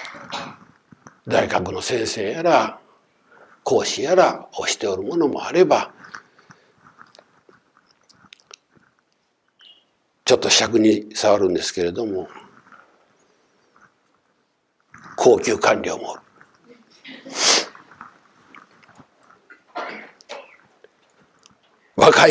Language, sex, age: Japanese, male, 60-79